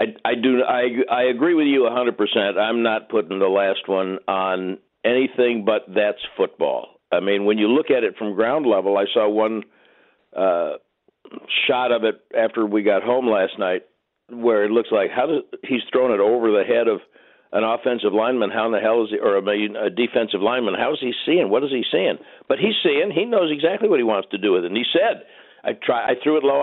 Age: 60-79